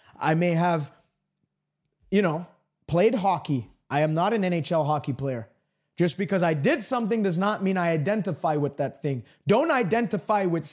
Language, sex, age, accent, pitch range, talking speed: English, male, 30-49, American, 170-230 Hz, 170 wpm